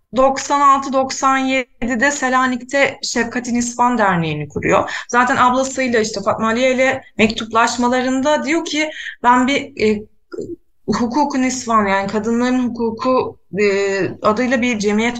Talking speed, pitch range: 105 wpm, 200-265 Hz